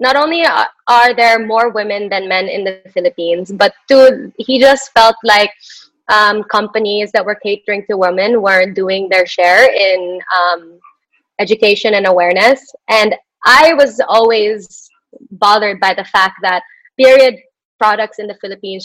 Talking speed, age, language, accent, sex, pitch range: 150 wpm, 20-39, English, Filipino, female, 190-230 Hz